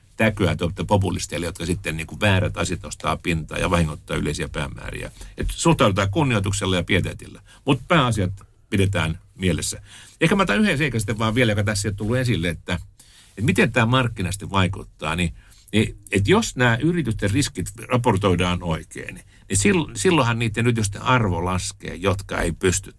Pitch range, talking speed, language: 95-125 Hz, 150 wpm, Finnish